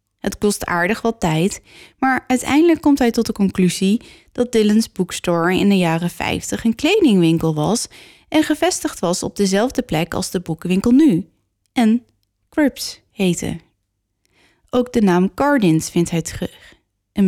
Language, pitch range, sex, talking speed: Dutch, 165-225 Hz, female, 150 wpm